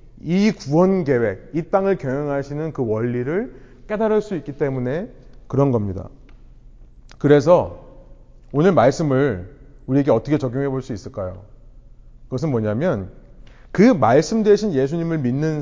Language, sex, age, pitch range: Korean, male, 30-49, 125-190 Hz